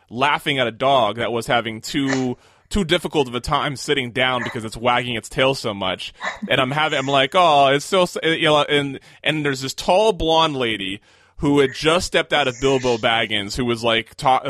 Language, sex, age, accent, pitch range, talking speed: English, male, 20-39, American, 125-155 Hz, 210 wpm